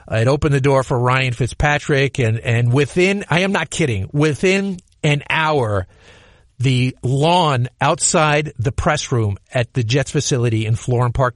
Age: 50-69